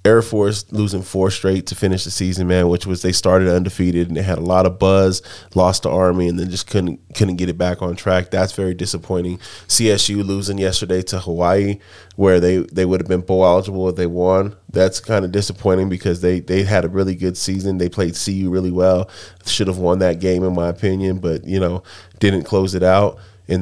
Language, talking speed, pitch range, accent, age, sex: English, 220 wpm, 90-100 Hz, American, 20-39, male